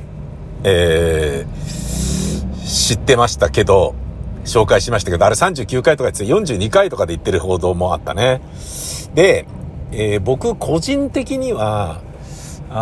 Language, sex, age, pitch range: Japanese, male, 50-69, 90-125 Hz